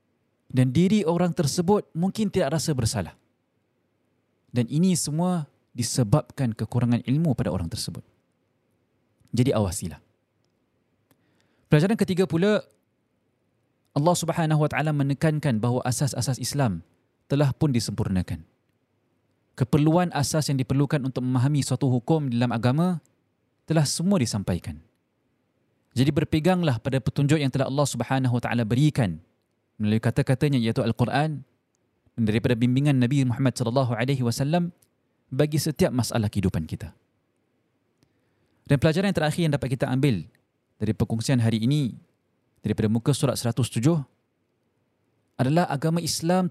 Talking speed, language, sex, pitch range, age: 110 wpm, Malay, male, 120-150 Hz, 20-39